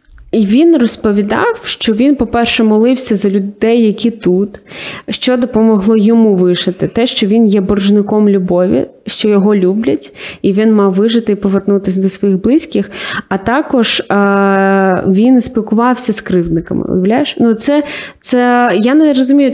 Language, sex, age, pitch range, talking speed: Ukrainian, female, 20-39, 195-240 Hz, 140 wpm